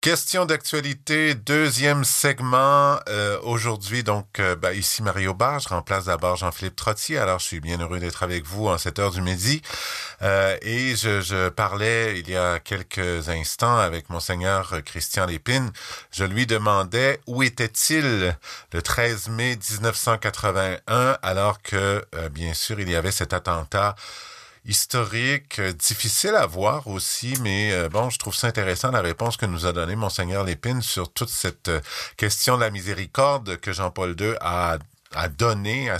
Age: 50-69